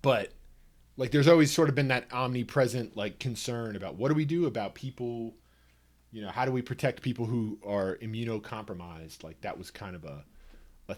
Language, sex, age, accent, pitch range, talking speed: English, male, 30-49, American, 100-140 Hz, 190 wpm